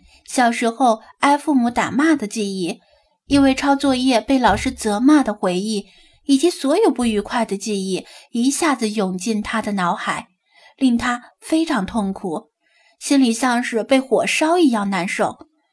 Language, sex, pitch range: Chinese, female, 220-290 Hz